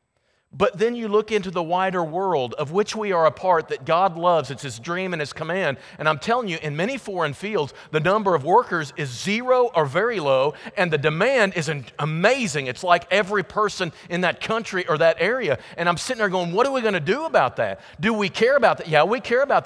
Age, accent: 40-59, American